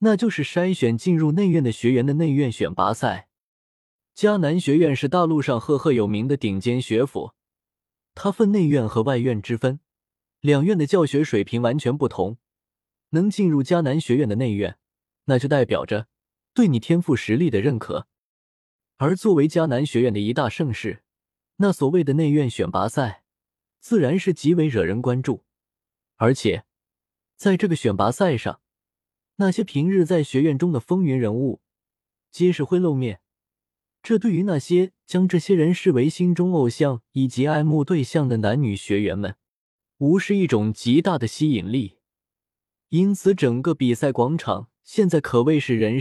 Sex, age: male, 20-39